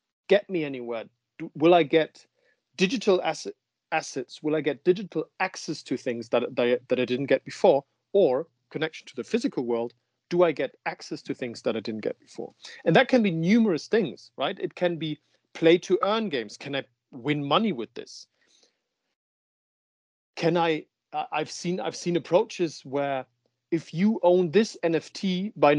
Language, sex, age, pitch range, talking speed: English, male, 40-59, 125-175 Hz, 175 wpm